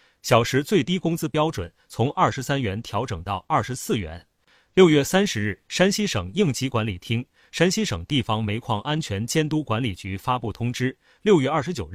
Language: Chinese